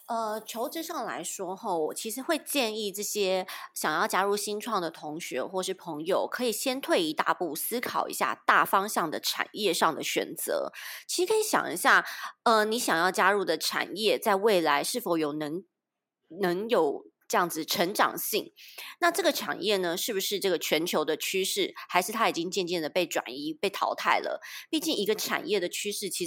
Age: 30-49